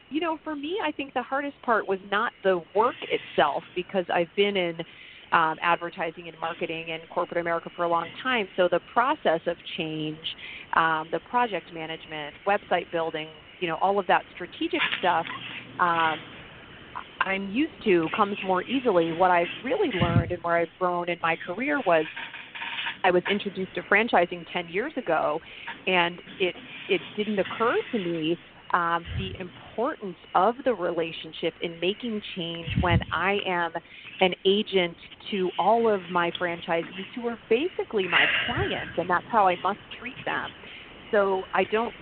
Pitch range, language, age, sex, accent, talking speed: 170-205 Hz, English, 30-49, female, American, 165 wpm